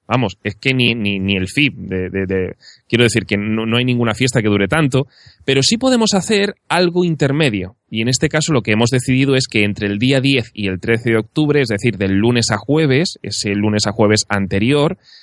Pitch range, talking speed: 105-135 Hz, 225 wpm